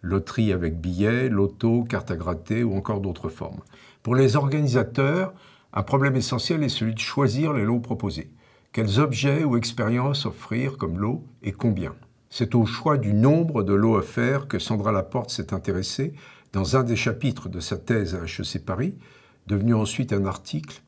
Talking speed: 175 wpm